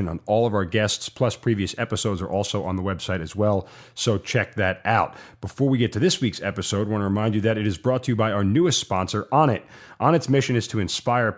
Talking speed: 260 wpm